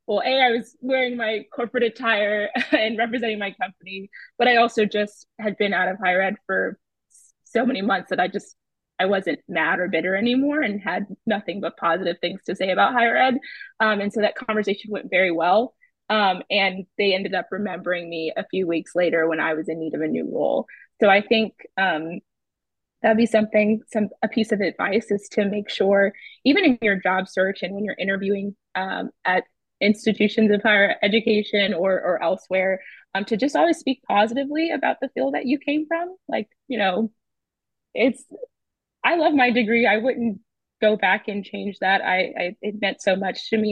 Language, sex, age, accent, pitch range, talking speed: English, female, 20-39, American, 190-235 Hz, 200 wpm